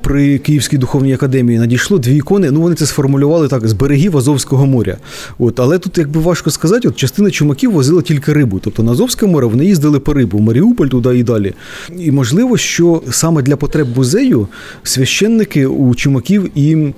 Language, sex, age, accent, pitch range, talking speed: Ukrainian, male, 30-49, native, 125-165 Hz, 185 wpm